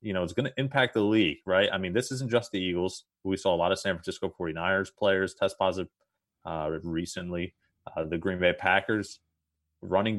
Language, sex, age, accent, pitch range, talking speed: English, male, 30-49, American, 80-95 Hz, 205 wpm